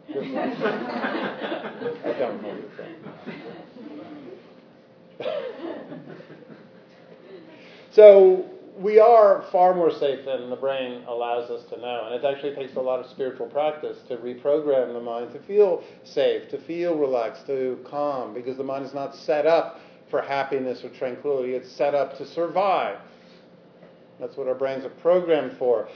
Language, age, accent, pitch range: English, 50-69, American, 130-175 Hz